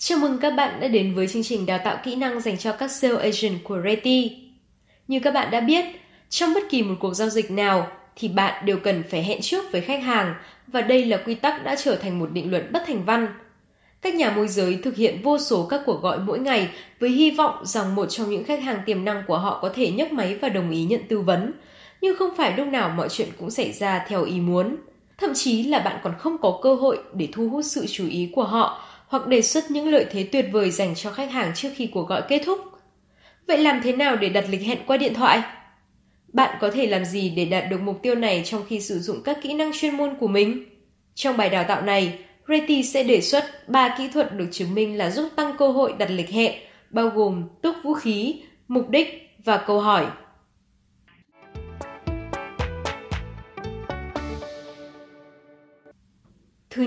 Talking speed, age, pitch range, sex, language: 220 wpm, 10-29, 195-275 Hz, female, Vietnamese